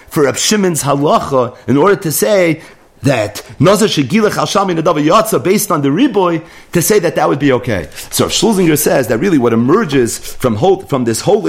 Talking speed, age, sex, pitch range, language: 155 wpm, 40-59, male, 155-215 Hz, English